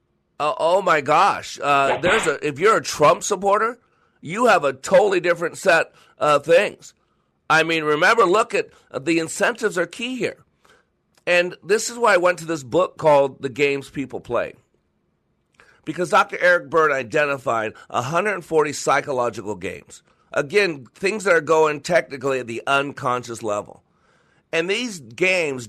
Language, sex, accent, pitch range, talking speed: English, male, American, 130-175 Hz, 155 wpm